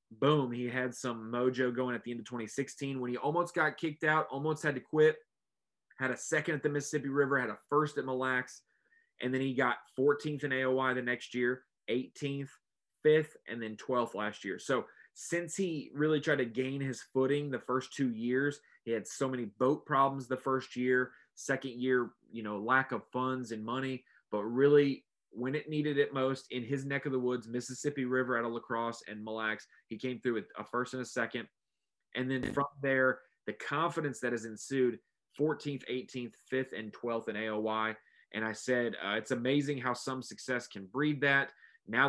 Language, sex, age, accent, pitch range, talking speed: English, male, 30-49, American, 120-140 Hz, 200 wpm